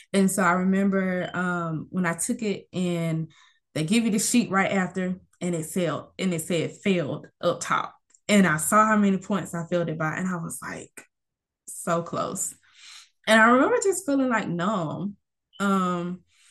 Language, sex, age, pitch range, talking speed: English, female, 20-39, 175-215 Hz, 180 wpm